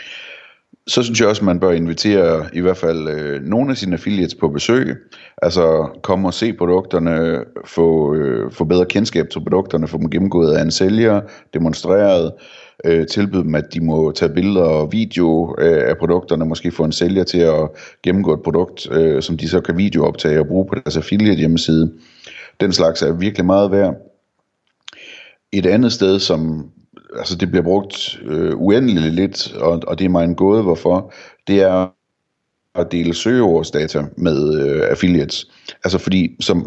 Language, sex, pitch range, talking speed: Danish, male, 80-95 Hz, 165 wpm